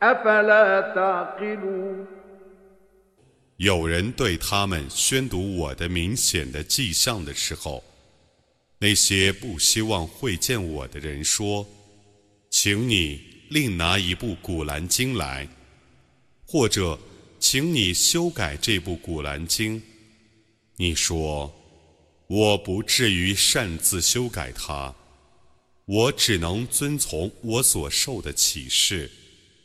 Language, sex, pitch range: Arabic, male, 80-115 Hz